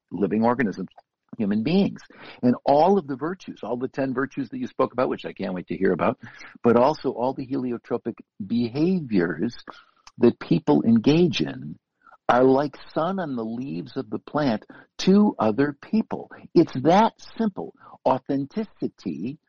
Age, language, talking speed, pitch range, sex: 60-79, English, 155 wpm, 125-200 Hz, male